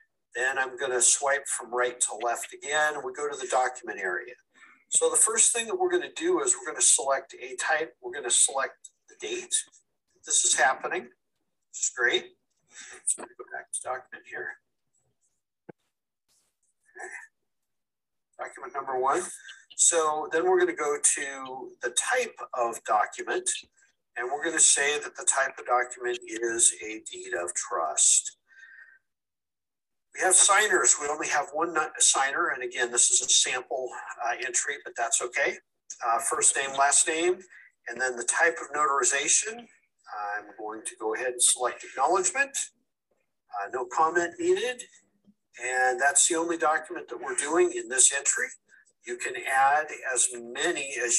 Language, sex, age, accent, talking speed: English, male, 50-69, American, 170 wpm